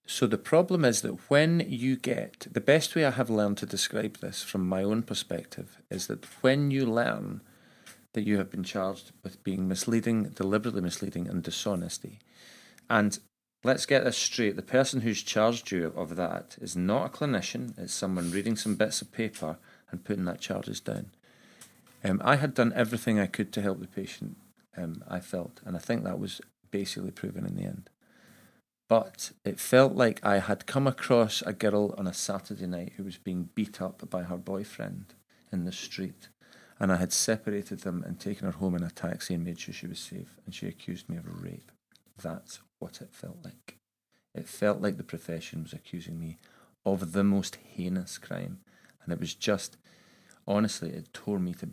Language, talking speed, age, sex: English, 195 wpm, 40-59, male